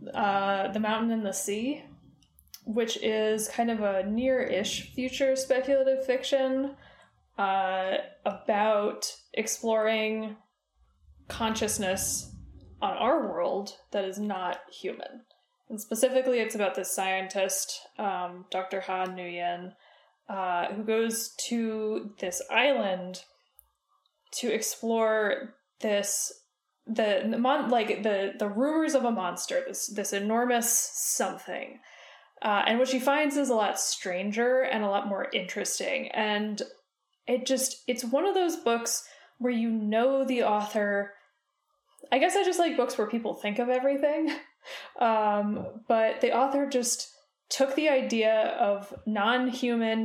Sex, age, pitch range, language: female, 10-29, 200-260 Hz, English